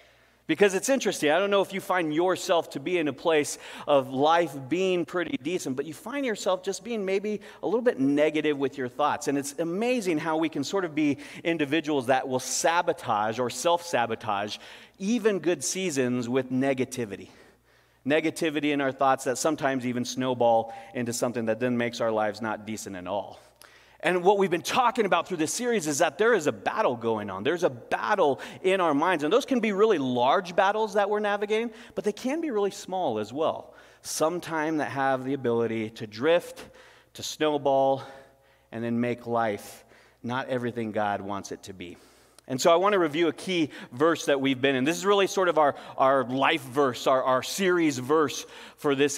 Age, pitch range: 30-49, 125-175 Hz